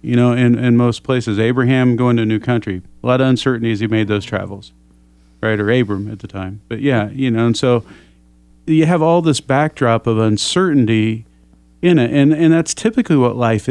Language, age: English, 40-59